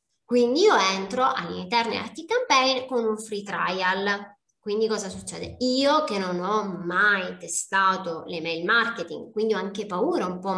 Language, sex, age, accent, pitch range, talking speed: Italian, female, 20-39, native, 190-260 Hz, 155 wpm